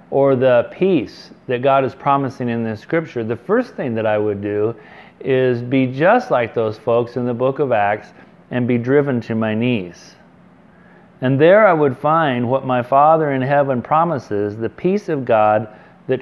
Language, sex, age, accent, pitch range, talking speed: English, male, 40-59, American, 120-165 Hz, 185 wpm